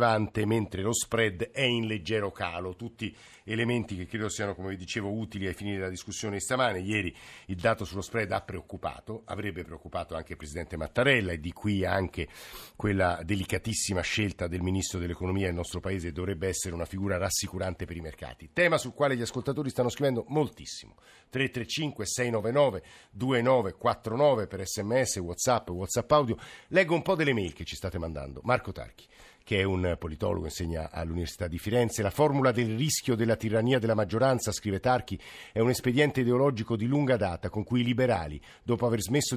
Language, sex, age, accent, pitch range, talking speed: Italian, male, 50-69, native, 95-125 Hz, 175 wpm